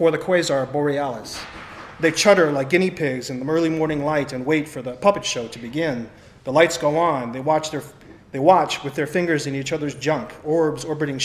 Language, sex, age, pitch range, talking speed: English, male, 30-49, 135-165 Hz, 220 wpm